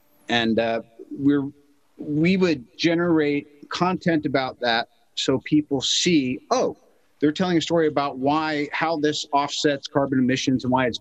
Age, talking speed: 50-69, 145 wpm